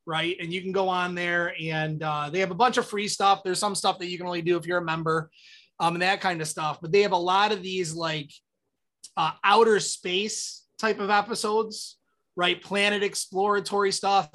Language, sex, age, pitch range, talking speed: English, male, 20-39, 165-205 Hz, 220 wpm